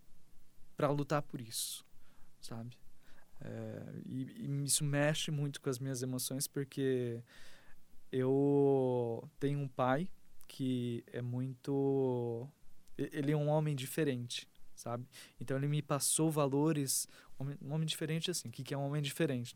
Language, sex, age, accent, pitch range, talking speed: Portuguese, male, 20-39, Brazilian, 130-155 Hz, 140 wpm